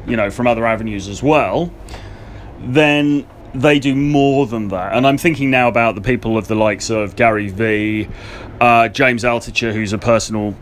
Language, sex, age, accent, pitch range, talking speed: English, male, 30-49, British, 105-130 Hz, 180 wpm